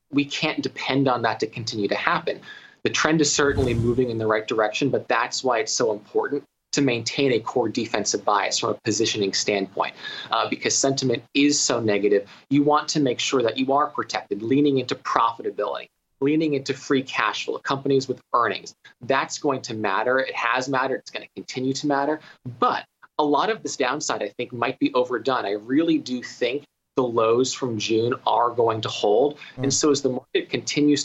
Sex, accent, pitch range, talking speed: male, American, 120-145 Hz, 195 wpm